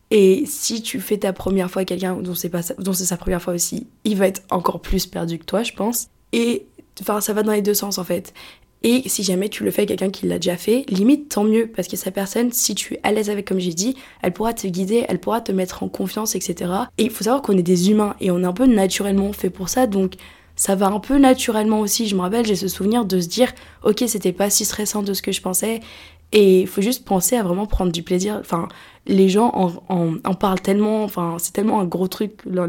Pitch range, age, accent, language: 185-215 Hz, 20-39, French, French